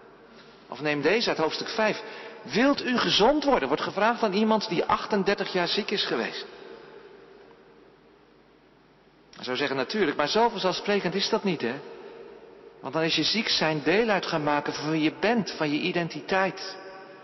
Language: Dutch